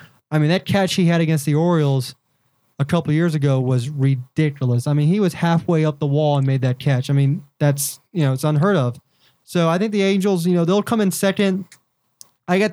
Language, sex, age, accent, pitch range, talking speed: English, male, 20-39, American, 145-175 Hz, 225 wpm